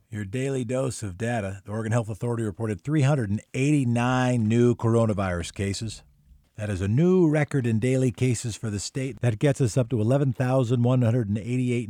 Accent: American